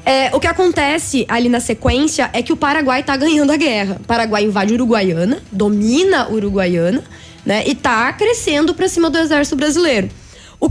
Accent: Brazilian